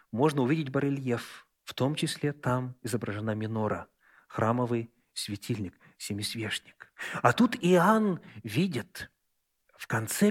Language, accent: Russian, native